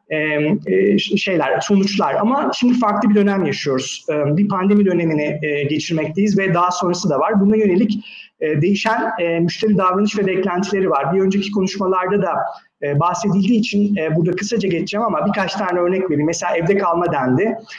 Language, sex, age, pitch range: Turkish, male, 30-49, 170-205 Hz